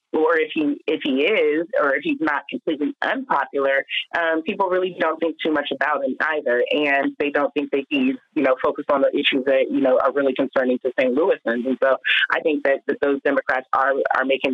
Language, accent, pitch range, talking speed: English, American, 135-180 Hz, 225 wpm